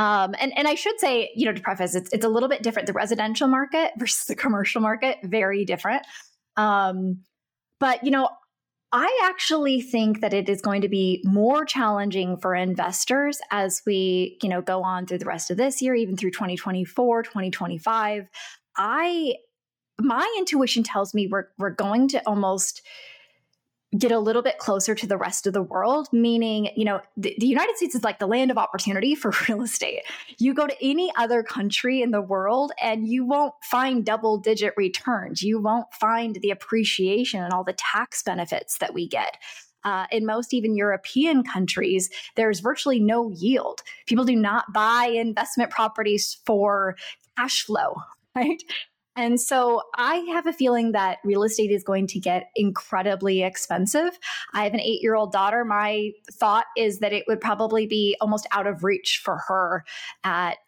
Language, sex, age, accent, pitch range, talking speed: English, female, 10-29, American, 195-245 Hz, 175 wpm